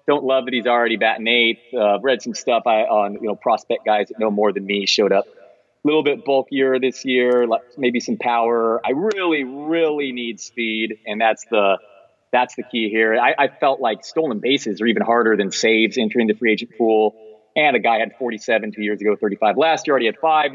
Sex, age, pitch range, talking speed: male, 30-49, 110-150 Hz, 230 wpm